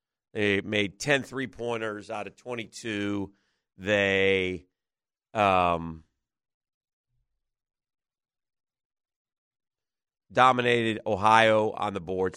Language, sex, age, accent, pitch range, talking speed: English, male, 40-59, American, 100-120 Hz, 70 wpm